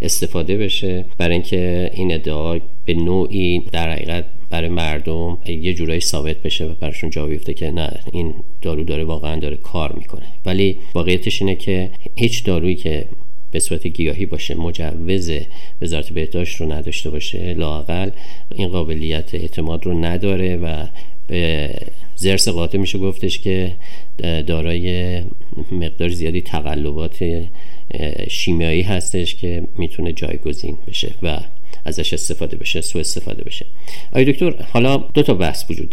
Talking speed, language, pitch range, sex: 130 wpm, Persian, 80-95 Hz, male